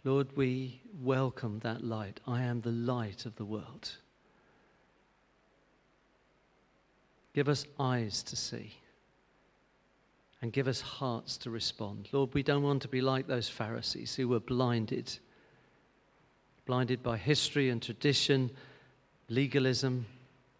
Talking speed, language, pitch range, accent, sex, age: 120 wpm, English, 115-135 Hz, British, male, 40-59